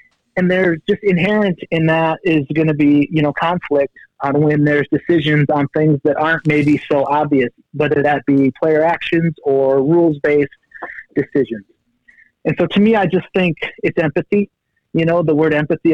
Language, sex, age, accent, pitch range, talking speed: English, male, 30-49, American, 140-165 Hz, 175 wpm